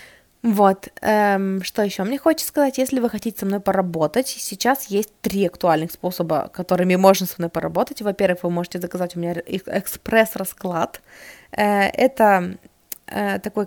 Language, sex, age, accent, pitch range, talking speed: Russian, female, 20-39, native, 185-225 Hz, 135 wpm